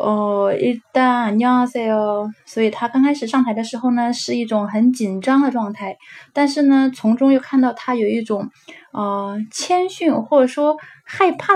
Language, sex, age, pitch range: Chinese, female, 10-29, 205-255 Hz